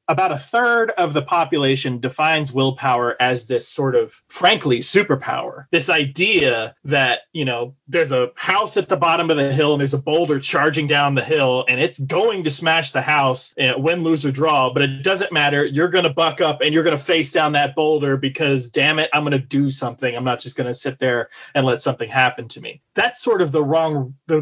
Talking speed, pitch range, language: 225 wpm, 130-160 Hz, English